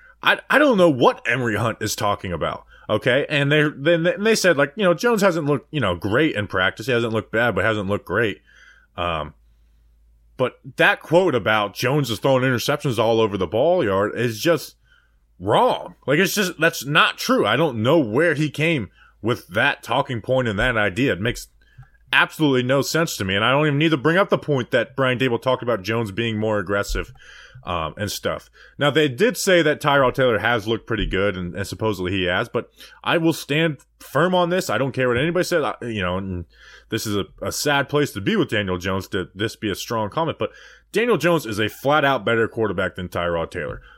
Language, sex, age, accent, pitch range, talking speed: English, male, 20-39, American, 100-150 Hz, 220 wpm